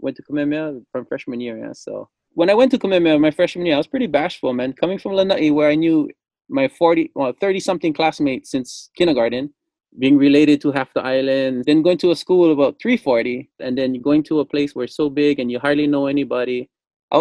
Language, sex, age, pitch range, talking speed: English, male, 20-39, 140-185 Hz, 220 wpm